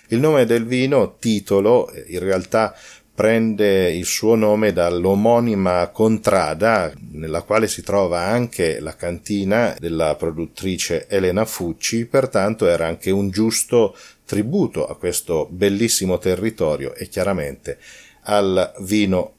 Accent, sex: native, male